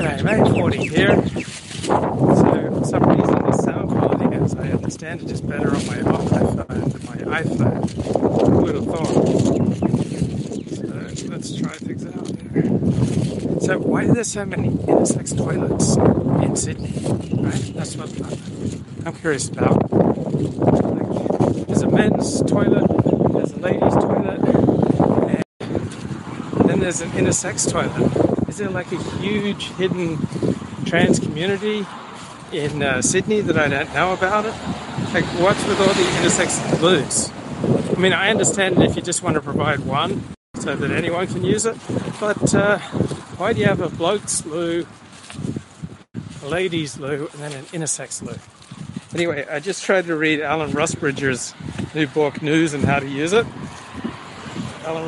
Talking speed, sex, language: 150 wpm, male, English